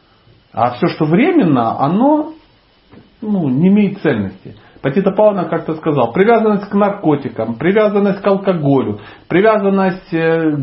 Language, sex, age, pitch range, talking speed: Russian, male, 40-59, 130-195 Hz, 115 wpm